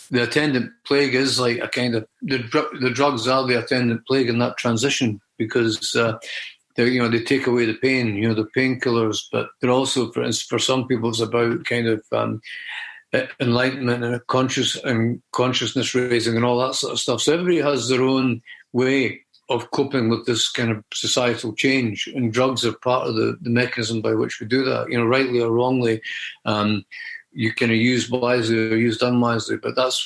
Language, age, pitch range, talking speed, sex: English, 50-69, 115-130 Hz, 195 wpm, male